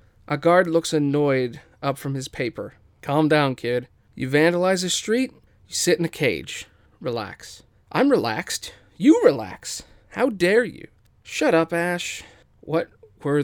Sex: male